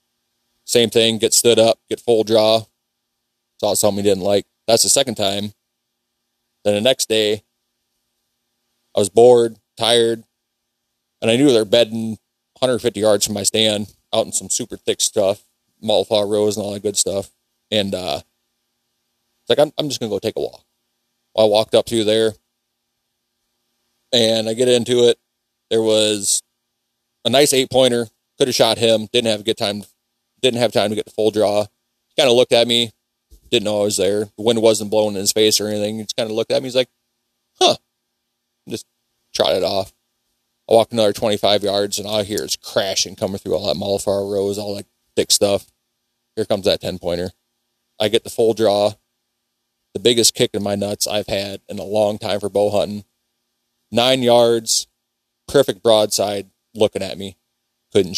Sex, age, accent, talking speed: male, 30-49, American, 190 wpm